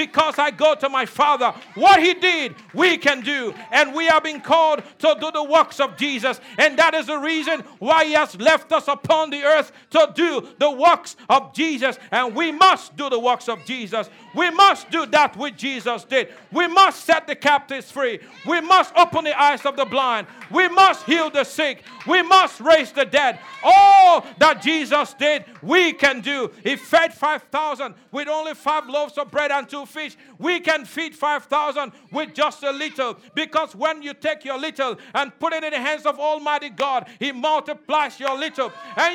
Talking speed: 195 wpm